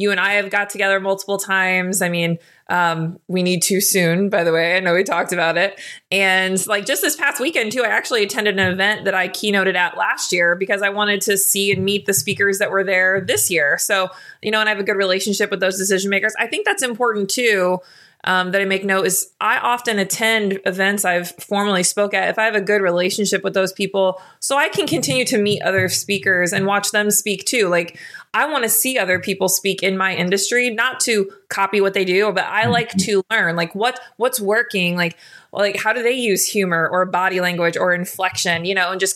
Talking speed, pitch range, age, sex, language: 235 wpm, 180-205 Hz, 20-39, female, English